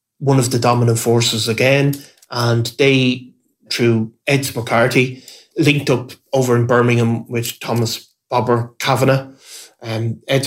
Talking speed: 130 wpm